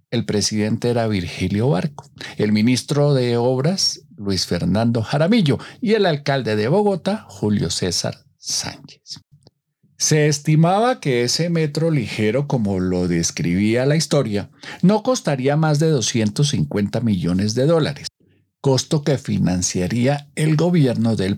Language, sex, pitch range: Spanish, male, 105-155 Hz